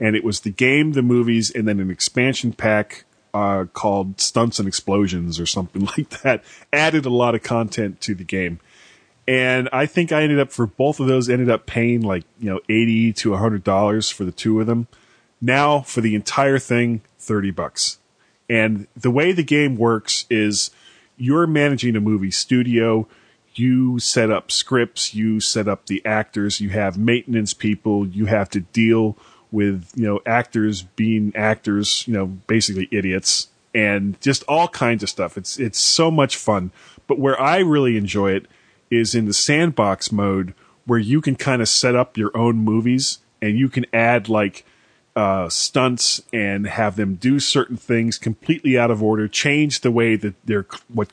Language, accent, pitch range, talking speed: English, American, 105-130 Hz, 185 wpm